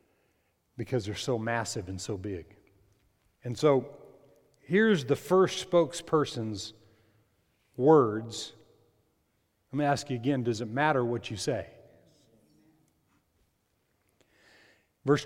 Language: English